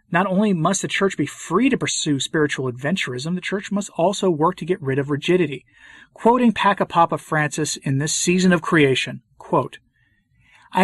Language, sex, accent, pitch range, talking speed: English, male, American, 140-185 Hz, 175 wpm